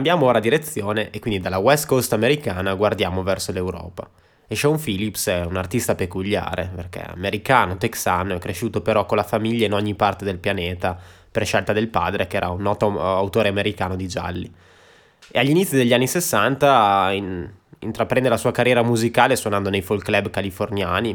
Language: Italian